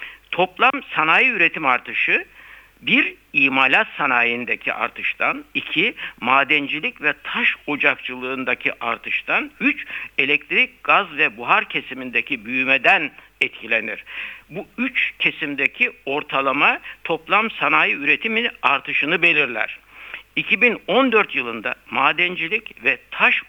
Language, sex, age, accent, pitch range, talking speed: Turkish, male, 60-79, native, 140-215 Hz, 90 wpm